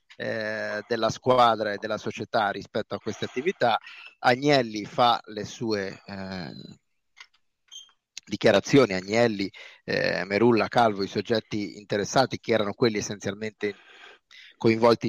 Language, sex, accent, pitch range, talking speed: Italian, male, native, 105-130 Hz, 110 wpm